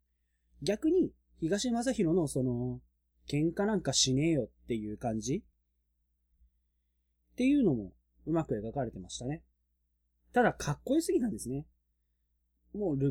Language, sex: Japanese, male